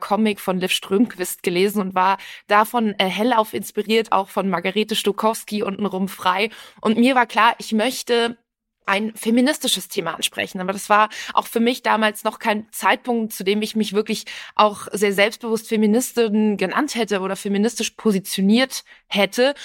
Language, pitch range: German, 205-240 Hz